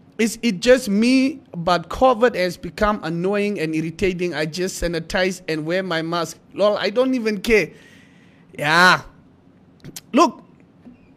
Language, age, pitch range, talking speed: English, 30-49, 170-230 Hz, 135 wpm